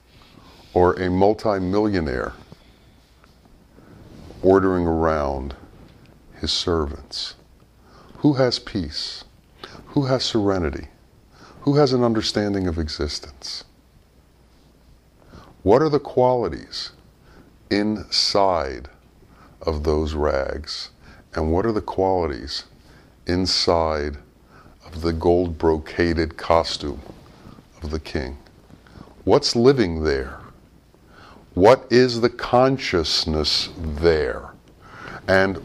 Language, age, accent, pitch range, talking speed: English, 60-79, American, 85-130 Hz, 85 wpm